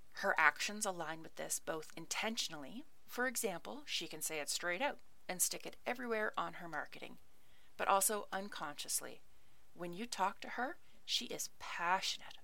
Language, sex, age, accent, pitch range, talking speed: English, female, 30-49, American, 155-210 Hz, 160 wpm